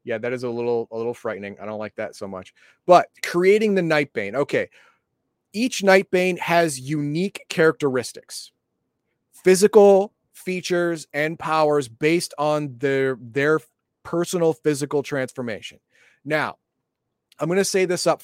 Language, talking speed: English, 140 wpm